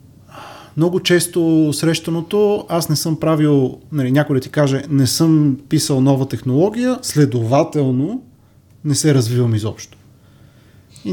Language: Bulgarian